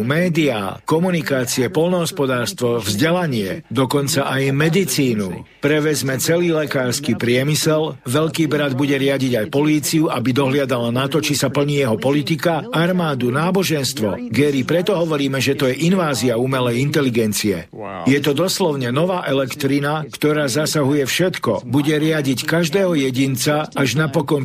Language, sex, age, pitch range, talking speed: Slovak, male, 50-69, 130-155 Hz, 125 wpm